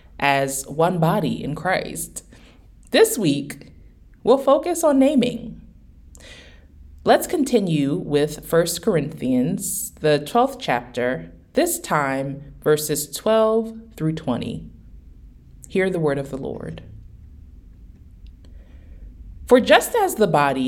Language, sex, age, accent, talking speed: English, female, 20-39, American, 105 wpm